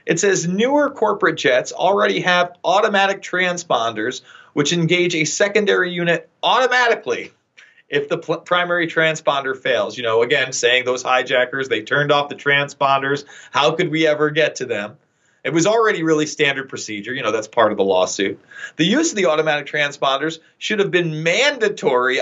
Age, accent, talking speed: 40-59, American, 165 wpm